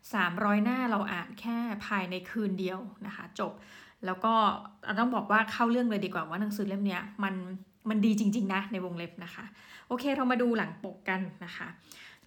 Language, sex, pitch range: Thai, female, 190-230 Hz